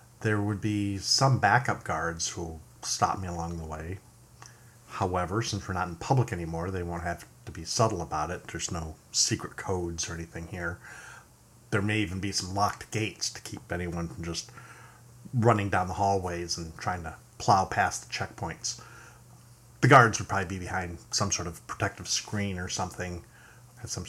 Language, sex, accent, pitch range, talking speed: English, male, American, 90-120 Hz, 180 wpm